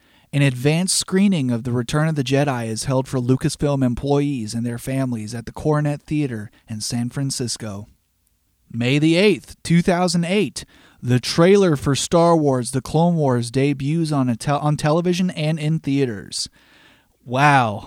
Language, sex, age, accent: English, male, 30-49, American